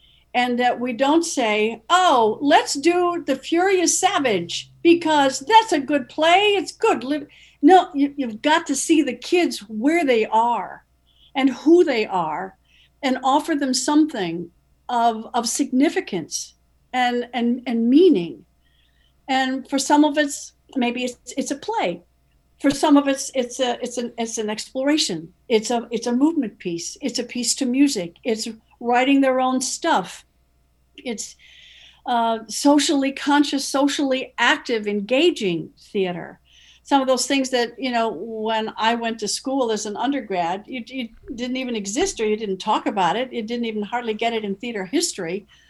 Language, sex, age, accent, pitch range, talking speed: English, female, 60-79, American, 225-290 Hz, 160 wpm